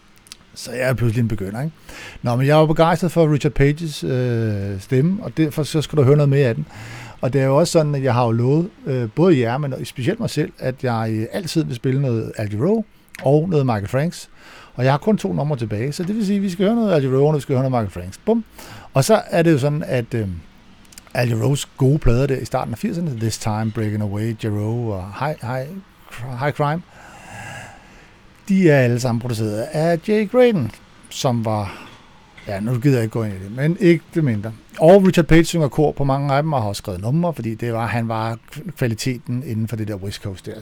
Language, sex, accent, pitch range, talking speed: Danish, male, native, 115-155 Hz, 235 wpm